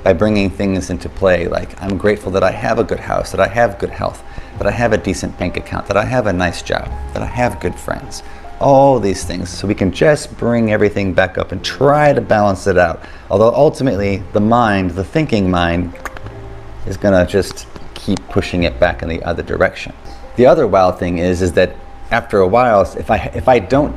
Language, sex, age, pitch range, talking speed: English, male, 30-49, 90-105 Hz, 215 wpm